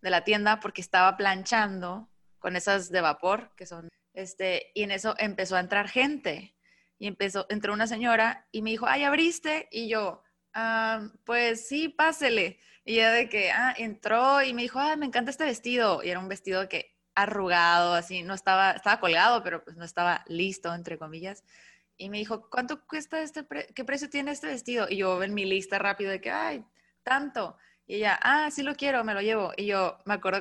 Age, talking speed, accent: 20-39, 205 wpm, Mexican